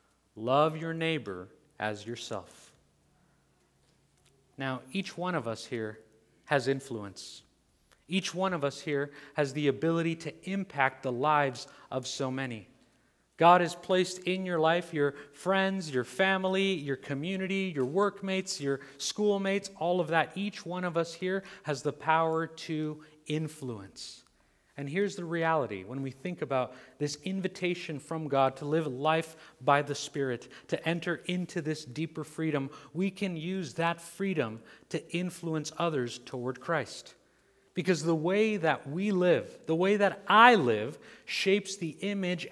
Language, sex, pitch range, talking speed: English, male, 135-180 Hz, 150 wpm